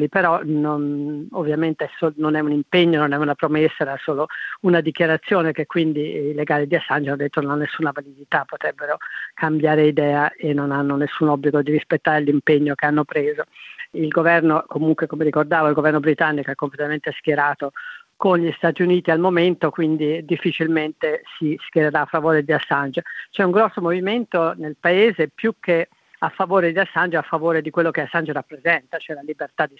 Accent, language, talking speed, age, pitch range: native, Italian, 185 wpm, 40-59, 150-165 Hz